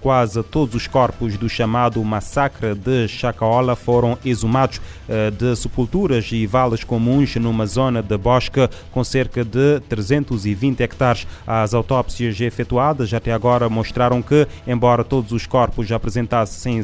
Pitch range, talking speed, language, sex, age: 110-130 Hz, 130 wpm, Portuguese, male, 30-49